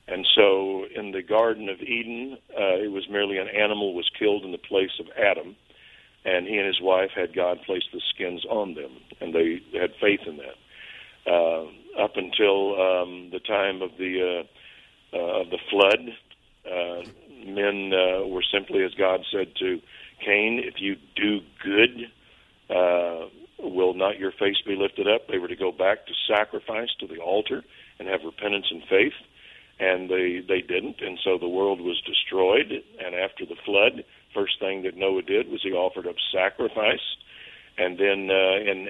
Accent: American